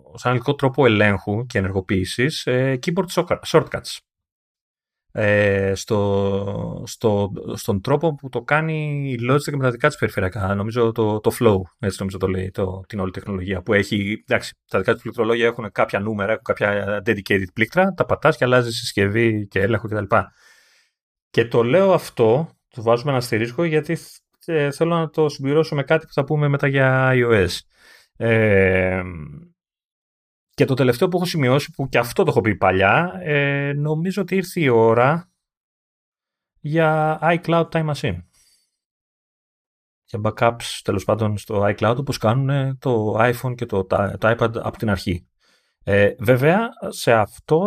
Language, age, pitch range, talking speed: Greek, 30-49, 100-150 Hz, 145 wpm